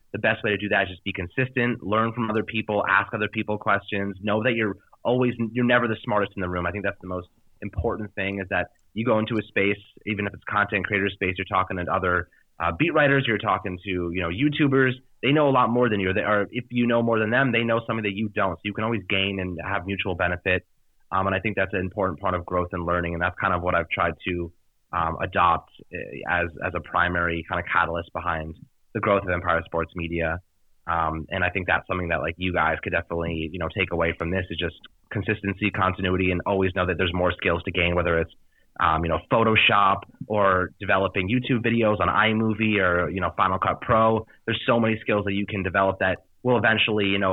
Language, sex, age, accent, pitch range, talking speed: English, male, 30-49, American, 90-110 Hz, 240 wpm